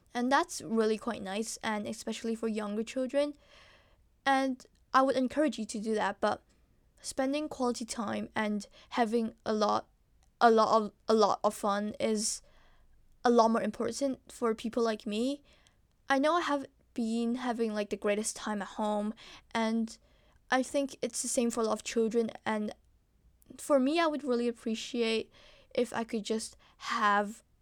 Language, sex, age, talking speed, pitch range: English, female, 10-29, 165 wpm, 210-250 Hz